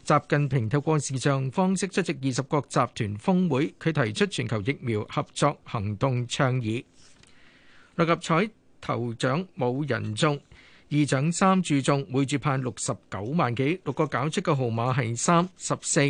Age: 50-69